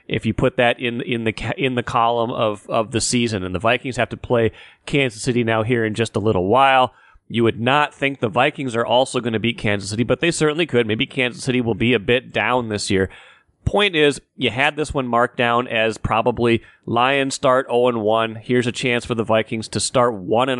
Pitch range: 110-140 Hz